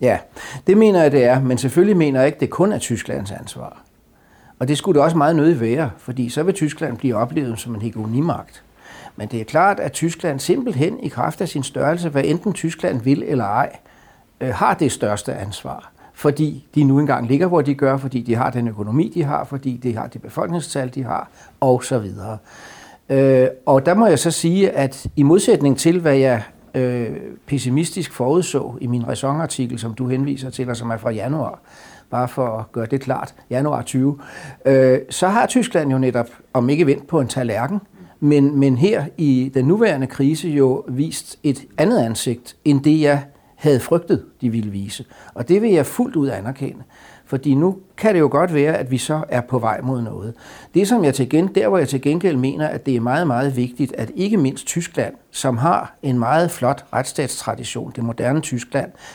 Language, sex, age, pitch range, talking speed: Danish, male, 60-79, 125-155 Hz, 205 wpm